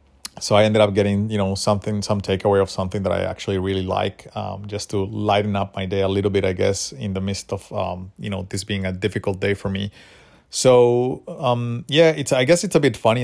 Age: 30-49